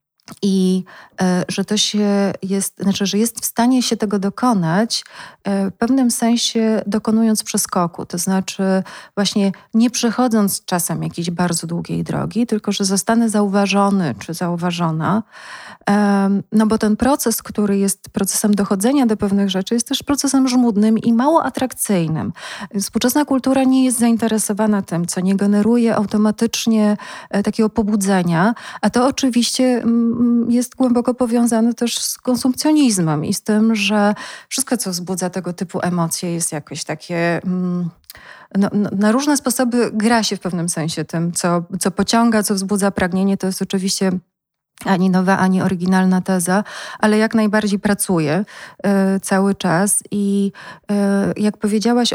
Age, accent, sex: 30-49, native, female